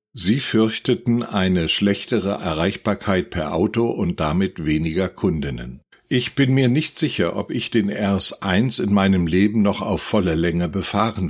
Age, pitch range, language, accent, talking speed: 60-79, 90-115 Hz, German, German, 150 wpm